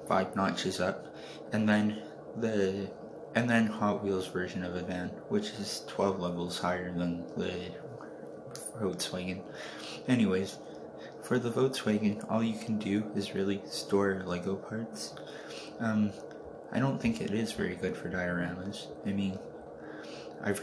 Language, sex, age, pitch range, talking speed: English, male, 20-39, 95-110 Hz, 140 wpm